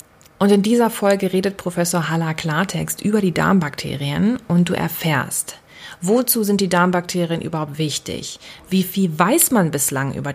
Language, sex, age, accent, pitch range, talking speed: German, female, 30-49, German, 165-200 Hz, 150 wpm